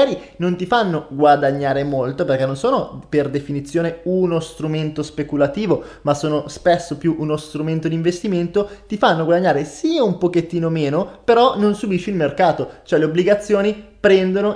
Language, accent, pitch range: Italian, native, 150-195 Hz